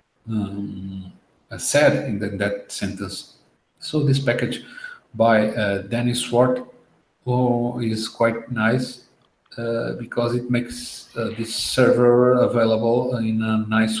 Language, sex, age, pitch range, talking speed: English, male, 50-69, 115-135 Hz, 115 wpm